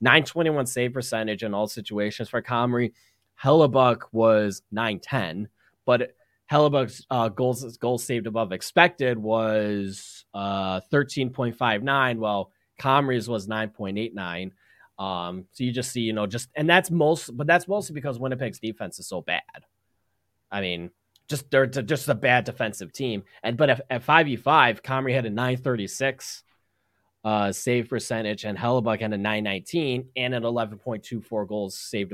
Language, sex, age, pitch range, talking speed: English, male, 20-39, 105-130 Hz, 140 wpm